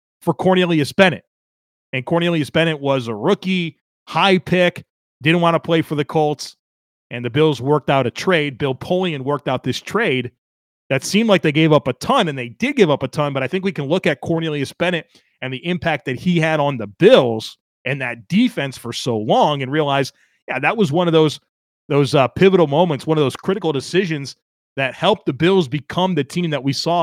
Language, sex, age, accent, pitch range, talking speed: English, male, 30-49, American, 135-175 Hz, 215 wpm